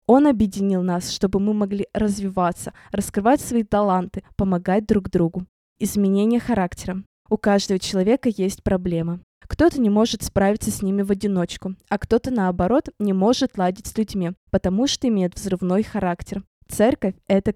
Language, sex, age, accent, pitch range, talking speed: Russian, female, 20-39, native, 185-235 Hz, 150 wpm